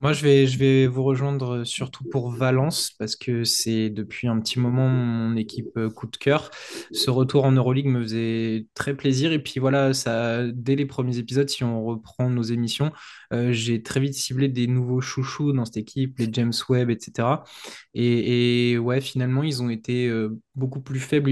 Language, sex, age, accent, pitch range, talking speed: French, male, 20-39, French, 115-130 Hz, 195 wpm